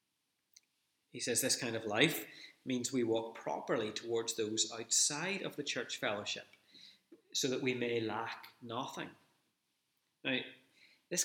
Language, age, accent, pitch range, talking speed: English, 30-49, British, 115-165 Hz, 135 wpm